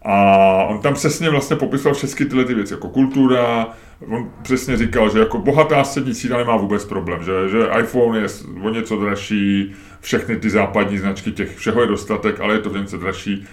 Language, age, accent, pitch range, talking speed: Czech, 30-49, native, 95-120 Hz, 200 wpm